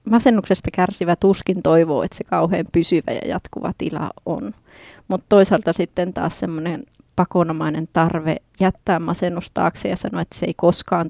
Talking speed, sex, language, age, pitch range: 145 wpm, female, Finnish, 30-49, 165-185 Hz